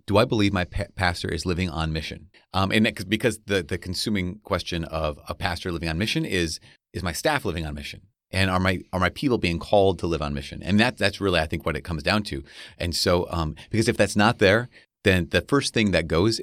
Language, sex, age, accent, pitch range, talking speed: English, male, 30-49, American, 85-110 Hz, 240 wpm